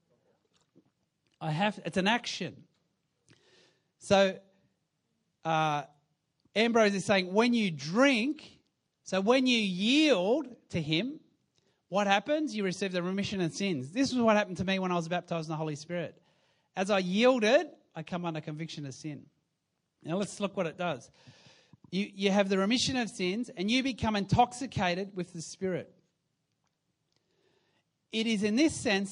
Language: English